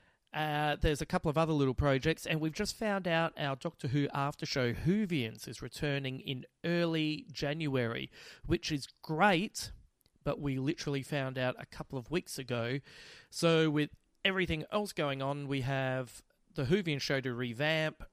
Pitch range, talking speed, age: 125-155 Hz, 165 wpm, 30-49